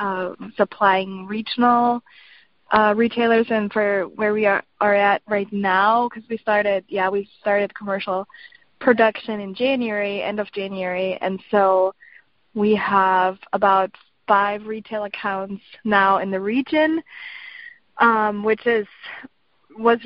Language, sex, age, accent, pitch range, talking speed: English, female, 20-39, American, 195-225 Hz, 130 wpm